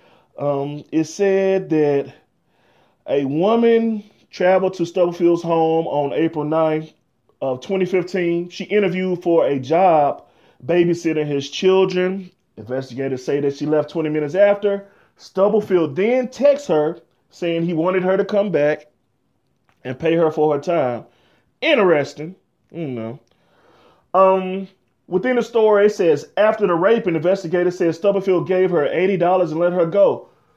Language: English